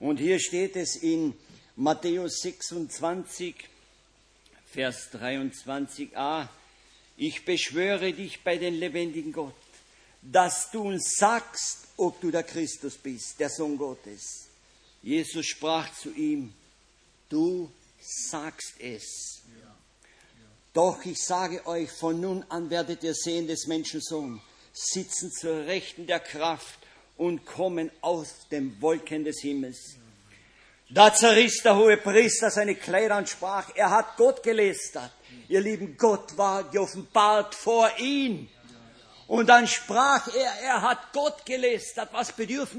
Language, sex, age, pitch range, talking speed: German, male, 50-69, 160-240 Hz, 125 wpm